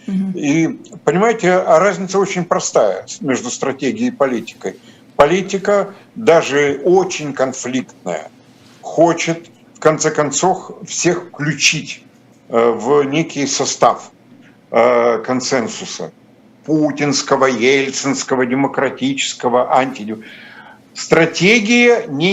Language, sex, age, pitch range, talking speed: Russian, male, 70-89, 140-190 Hz, 80 wpm